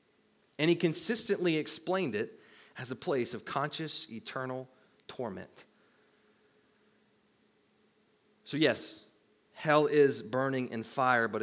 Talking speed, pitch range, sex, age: 105 wpm, 145-215 Hz, male, 30-49